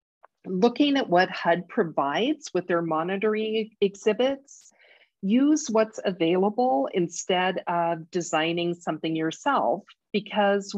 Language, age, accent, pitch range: English, 50-69, American, 170-215 Hz